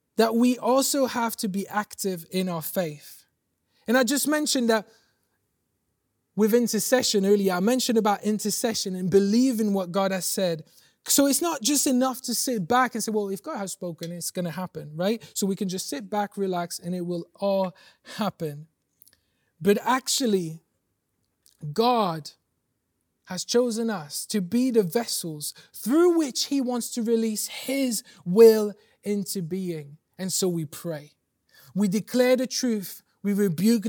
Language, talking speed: English, 160 wpm